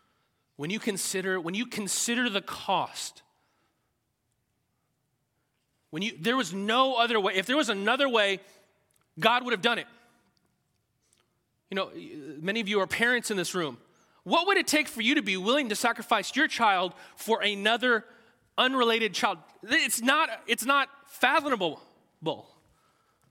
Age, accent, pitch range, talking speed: 30-49, American, 210-275 Hz, 145 wpm